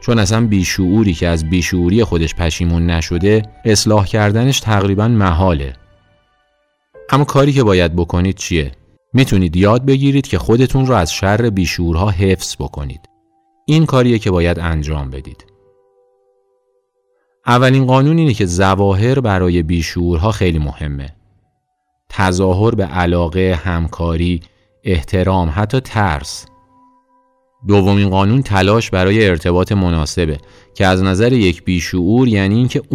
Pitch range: 85-115 Hz